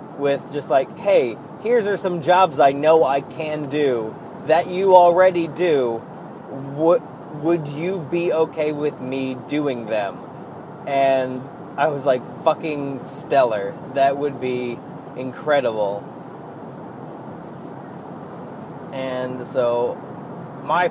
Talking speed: 110 wpm